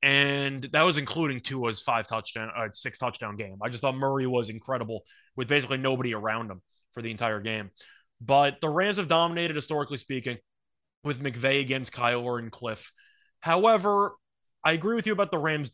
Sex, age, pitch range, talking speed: male, 20-39, 125-165 Hz, 170 wpm